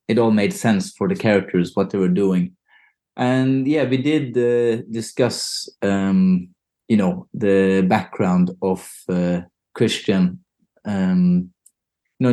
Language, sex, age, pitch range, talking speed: English, male, 30-49, 90-130 Hz, 130 wpm